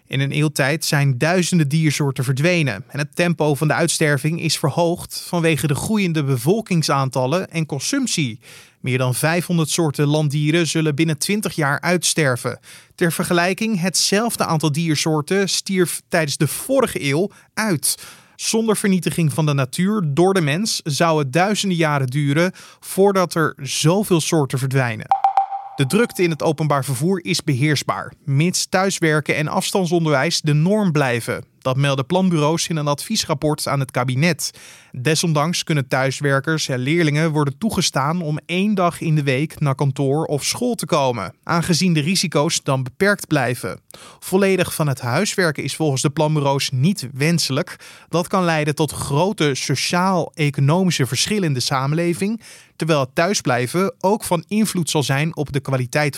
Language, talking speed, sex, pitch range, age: Dutch, 150 wpm, male, 140-180 Hz, 20-39